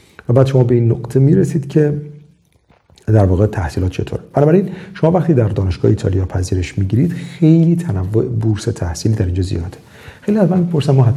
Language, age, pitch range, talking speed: Persian, 40-59, 105-145 Hz, 175 wpm